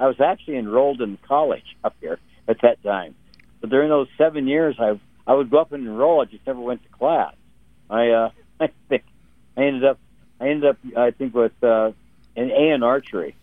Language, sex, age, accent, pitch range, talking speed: English, male, 60-79, American, 100-120 Hz, 210 wpm